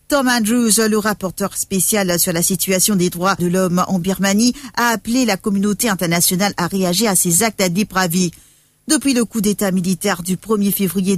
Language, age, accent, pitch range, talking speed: English, 50-69, French, 190-220 Hz, 175 wpm